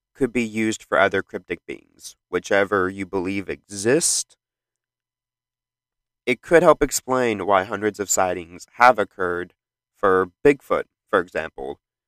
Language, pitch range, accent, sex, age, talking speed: English, 100-125 Hz, American, male, 30-49, 125 wpm